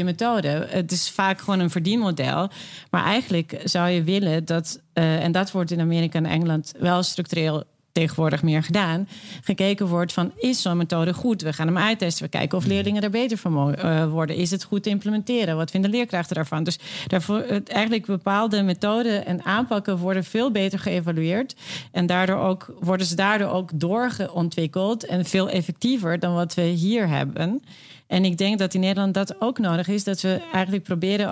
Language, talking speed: Dutch, 185 wpm